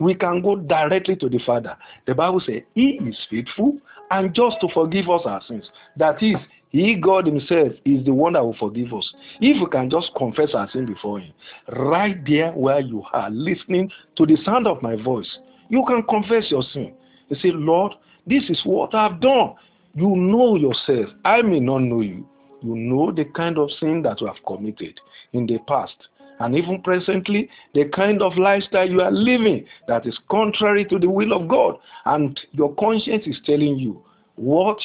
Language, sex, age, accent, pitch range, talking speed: English, male, 50-69, Nigerian, 140-205 Hz, 195 wpm